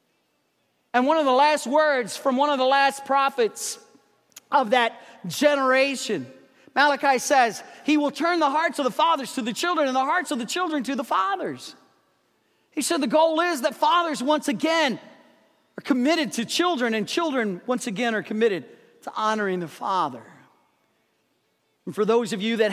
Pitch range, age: 200-275 Hz, 40-59